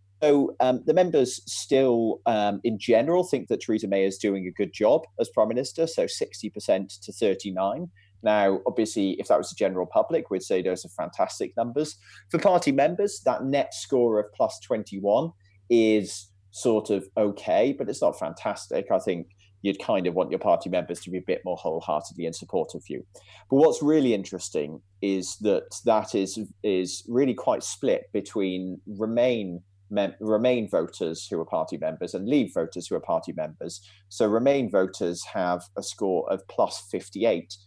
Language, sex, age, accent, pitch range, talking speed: English, male, 30-49, British, 95-110 Hz, 175 wpm